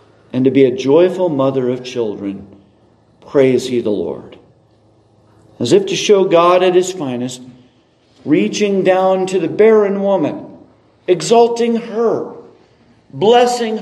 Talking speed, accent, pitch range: 125 wpm, American, 130-195 Hz